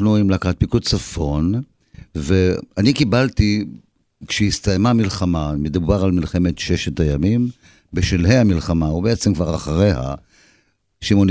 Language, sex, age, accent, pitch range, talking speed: Hebrew, male, 50-69, native, 90-115 Hz, 110 wpm